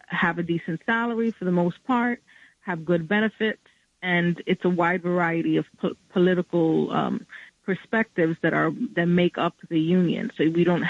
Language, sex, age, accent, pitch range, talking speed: English, female, 20-39, American, 165-195 Hz, 170 wpm